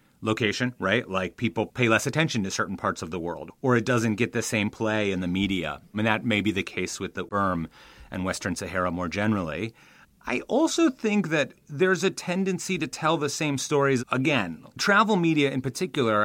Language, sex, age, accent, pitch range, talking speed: English, male, 30-49, American, 105-150 Hz, 205 wpm